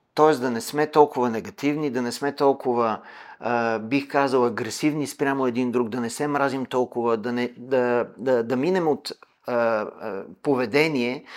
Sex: male